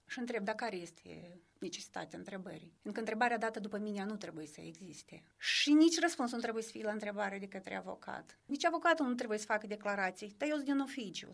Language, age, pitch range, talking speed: Romanian, 30-49, 190-235 Hz, 215 wpm